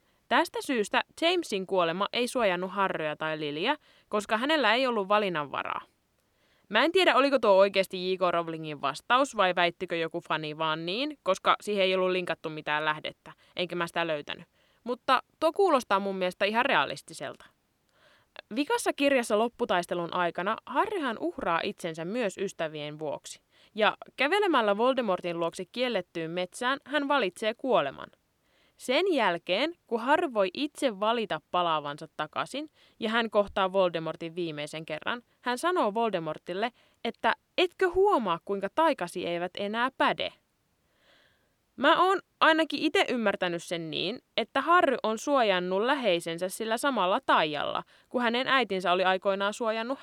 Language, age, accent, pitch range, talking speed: Finnish, 20-39, native, 180-265 Hz, 135 wpm